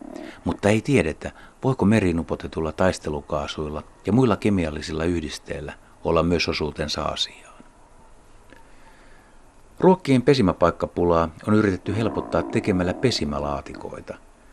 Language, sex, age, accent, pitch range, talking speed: Finnish, male, 60-79, native, 80-100 Hz, 85 wpm